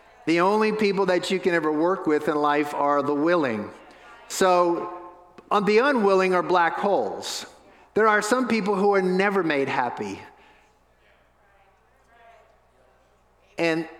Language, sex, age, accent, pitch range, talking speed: English, male, 50-69, American, 155-200 Hz, 135 wpm